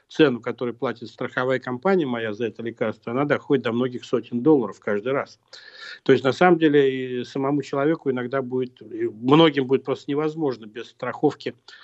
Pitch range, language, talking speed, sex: 125-155 Hz, Russian, 165 wpm, male